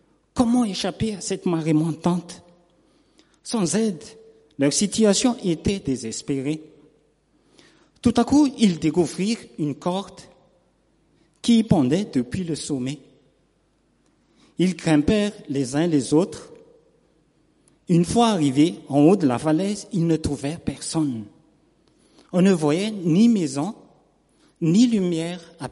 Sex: male